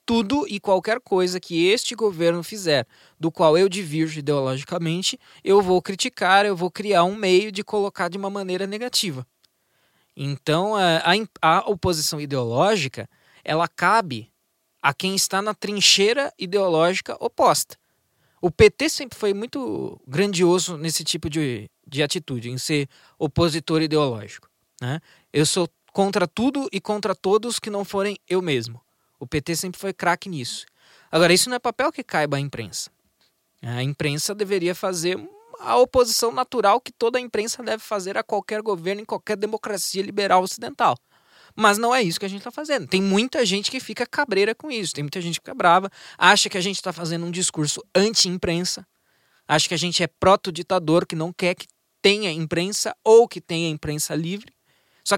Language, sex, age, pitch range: Portuguese, male, 20-39, 165-210 Hz